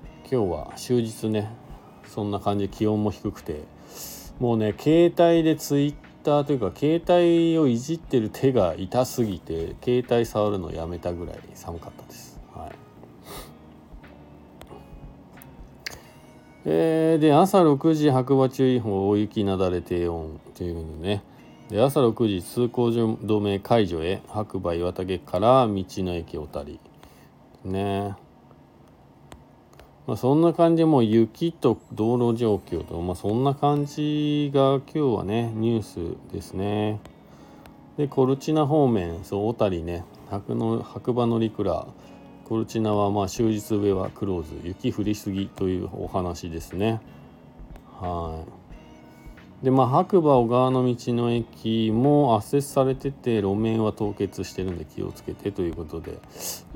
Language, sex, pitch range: Japanese, male, 90-130 Hz